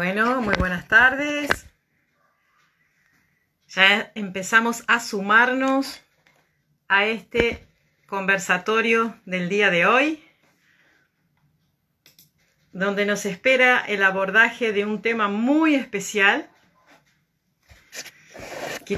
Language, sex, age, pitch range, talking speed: Spanish, female, 70-89, 180-225 Hz, 80 wpm